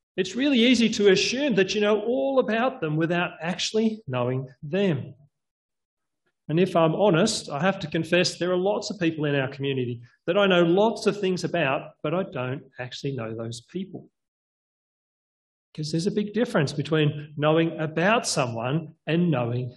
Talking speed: 170 wpm